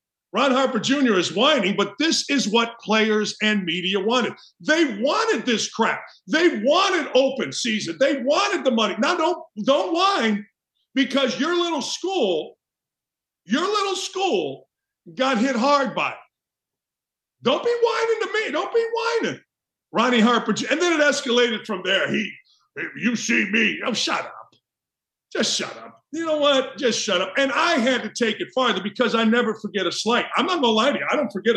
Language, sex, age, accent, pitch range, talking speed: English, male, 50-69, American, 205-290 Hz, 185 wpm